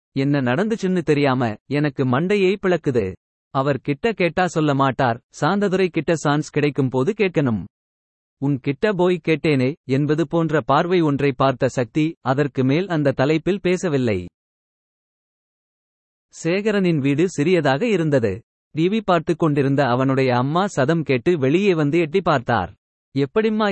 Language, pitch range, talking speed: Tamil, 135-175 Hz, 120 wpm